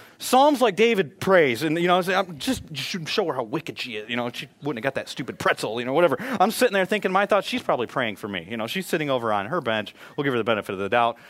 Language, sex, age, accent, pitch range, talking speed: English, male, 30-49, American, 150-195 Hz, 285 wpm